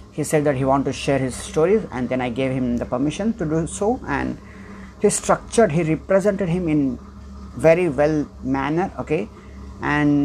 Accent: Indian